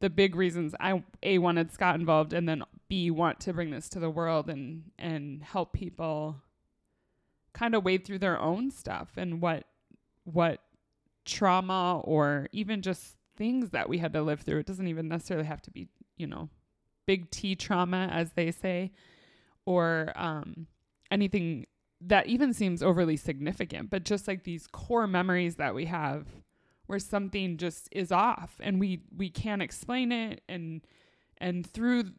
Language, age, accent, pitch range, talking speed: English, 20-39, American, 165-195 Hz, 165 wpm